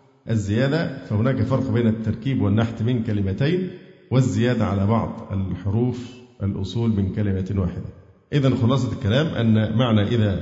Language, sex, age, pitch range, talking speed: Arabic, male, 50-69, 110-135 Hz, 125 wpm